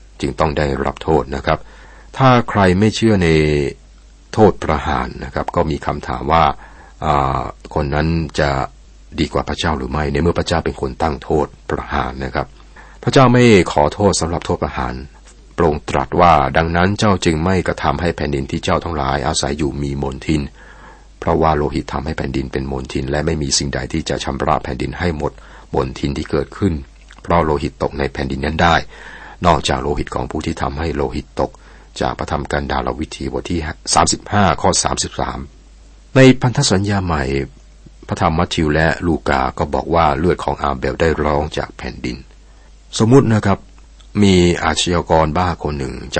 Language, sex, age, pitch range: Thai, male, 60-79, 70-85 Hz